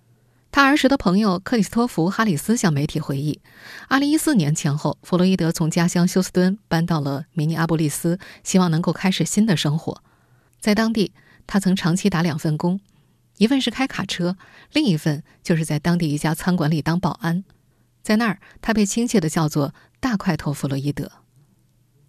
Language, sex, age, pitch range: Chinese, female, 20-39, 155-210 Hz